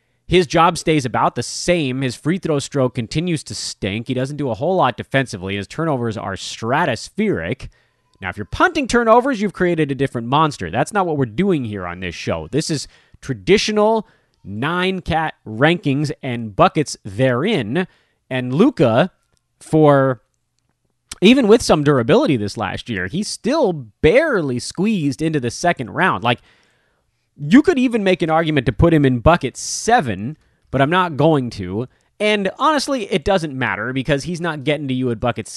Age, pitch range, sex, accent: 30-49, 120-175 Hz, male, American